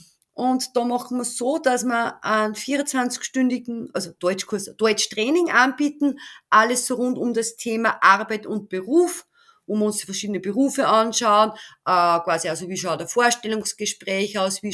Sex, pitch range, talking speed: female, 200-250 Hz, 145 wpm